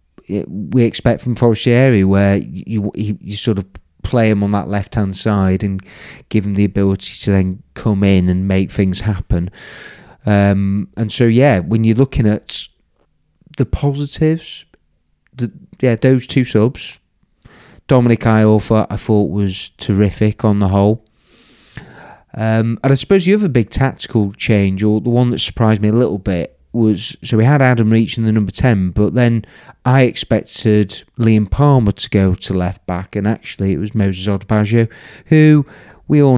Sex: male